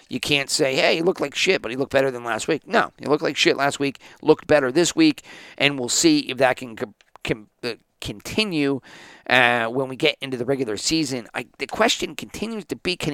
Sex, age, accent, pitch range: male, 40-59, American, 115-140 Hz